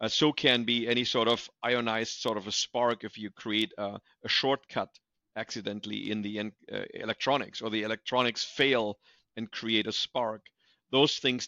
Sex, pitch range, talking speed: male, 105-120 Hz, 175 wpm